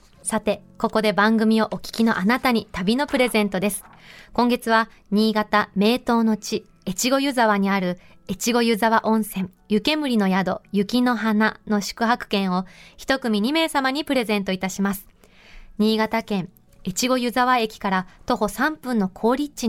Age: 20-39